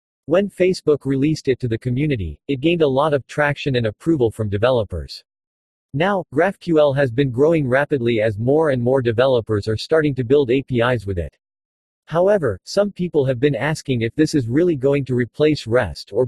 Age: 40-59